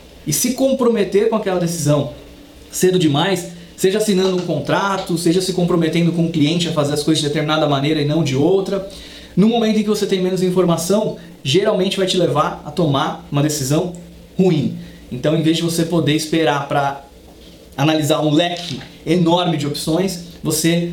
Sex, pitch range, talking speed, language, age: male, 150-180 Hz, 175 wpm, Portuguese, 20-39